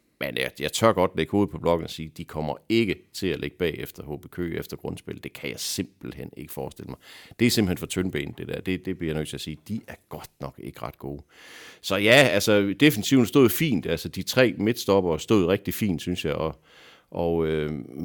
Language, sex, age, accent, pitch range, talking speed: Danish, male, 60-79, native, 80-110 Hz, 230 wpm